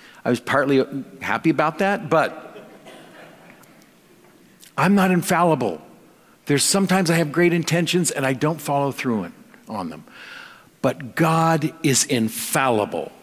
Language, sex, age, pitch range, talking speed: English, male, 50-69, 130-170 Hz, 125 wpm